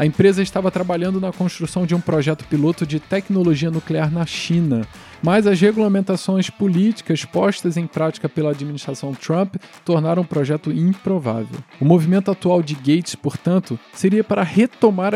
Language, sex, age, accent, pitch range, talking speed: Portuguese, male, 20-39, Brazilian, 150-195 Hz, 150 wpm